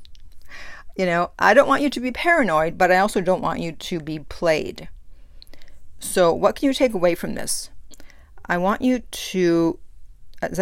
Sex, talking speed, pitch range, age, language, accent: female, 175 wpm, 165-215 Hz, 50-69, English, American